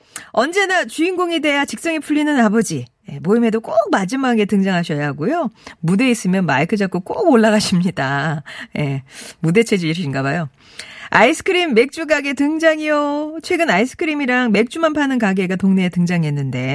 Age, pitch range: 40-59, 170-280 Hz